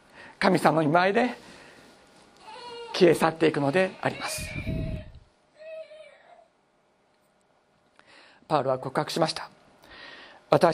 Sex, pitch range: male, 170-210 Hz